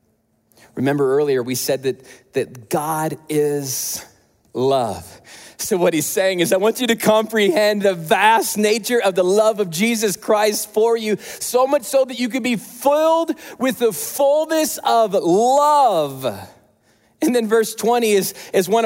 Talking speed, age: 160 wpm, 40-59